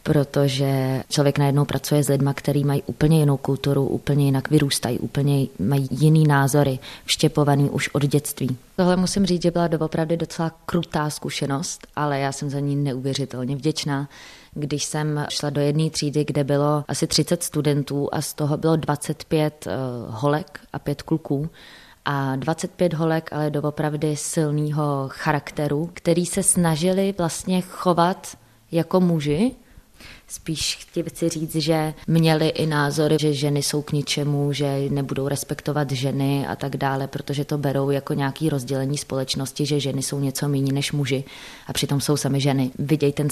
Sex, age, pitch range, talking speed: female, 20-39, 135-150 Hz, 155 wpm